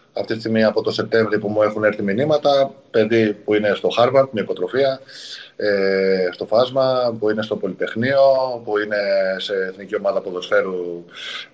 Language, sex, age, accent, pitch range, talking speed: Greek, male, 20-39, Spanish, 105-120 Hz, 160 wpm